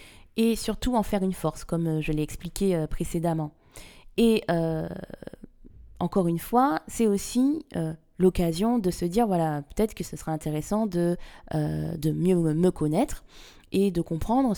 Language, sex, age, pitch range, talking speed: French, female, 20-39, 170-235 Hz, 165 wpm